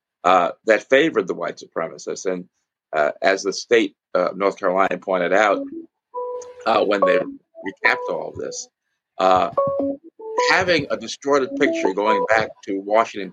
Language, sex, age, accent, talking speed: English, male, 50-69, American, 150 wpm